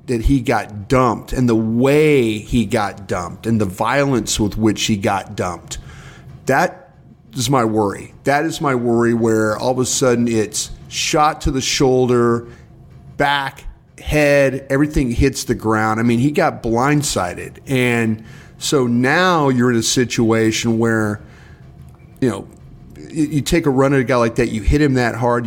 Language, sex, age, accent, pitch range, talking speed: English, male, 40-59, American, 110-130 Hz, 165 wpm